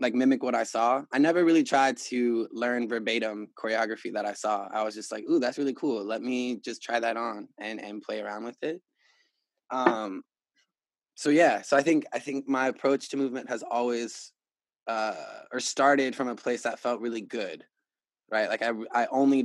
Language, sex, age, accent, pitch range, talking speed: English, male, 20-39, American, 110-130 Hz, 200 wpm